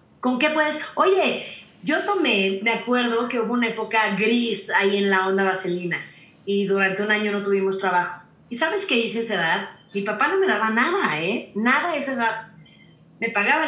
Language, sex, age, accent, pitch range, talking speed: Spanish, female, 30-49, Mexican, 195-265 Hz, 195 wpm